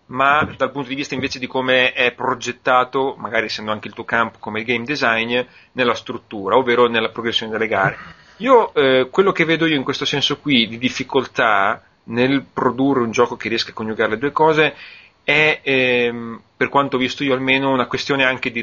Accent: native